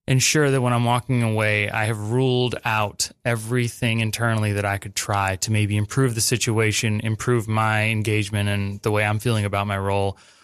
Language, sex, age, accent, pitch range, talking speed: English, male, 20-39, American, 105-125 Hz, 185 wpm